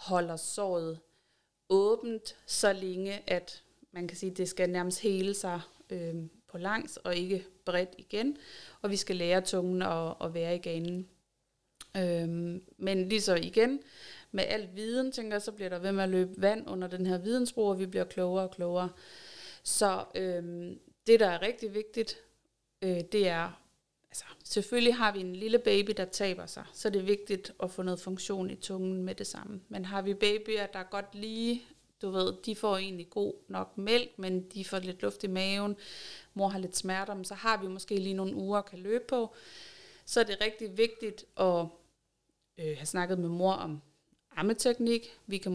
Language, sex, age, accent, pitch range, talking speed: Danish, female, 30-49, native, 185-215 Hz, 190 wpm